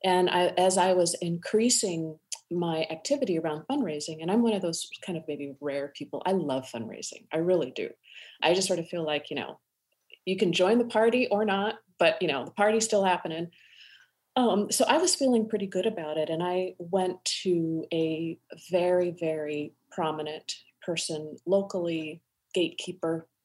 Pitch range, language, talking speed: 165-210 Hz, English, 170 wpm